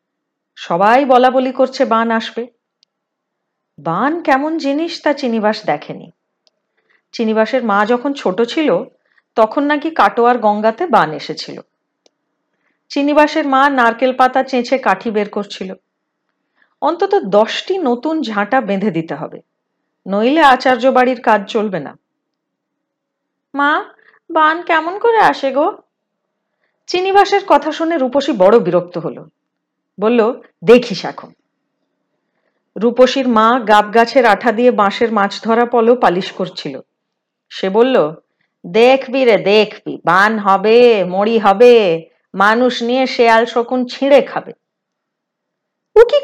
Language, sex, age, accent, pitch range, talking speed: Hindi, female, 40-59, native, 215-290 Hz, 90 wpm